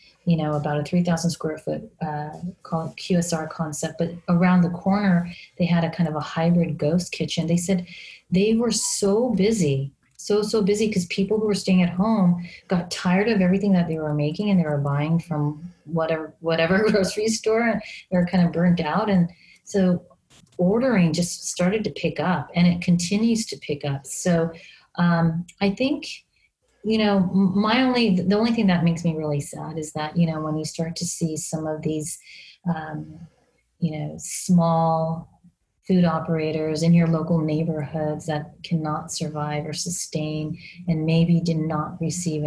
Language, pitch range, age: English, 155-180 Hz, 30-49